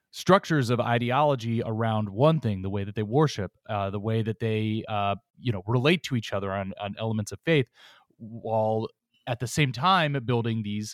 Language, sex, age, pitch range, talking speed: English, male, 30-49, 110-155 Hz, 190 wpm